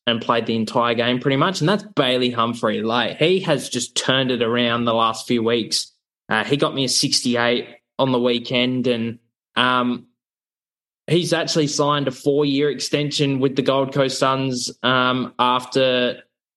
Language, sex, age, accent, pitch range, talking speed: English, male, 20-39, Australian, 120-155 Hz, 170 wpm